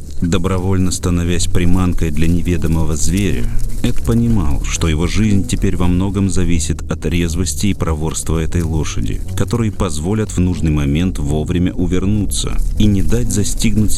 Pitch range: 80-100 Hz